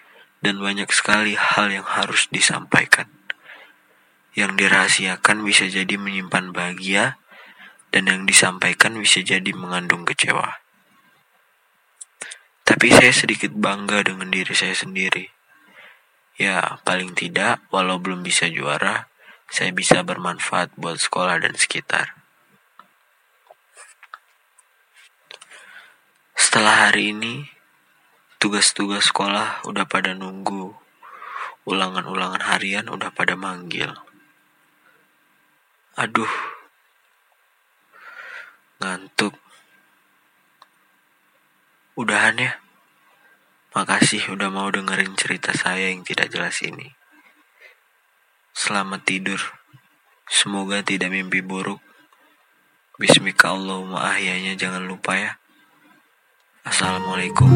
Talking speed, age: 85 wpm, 20-39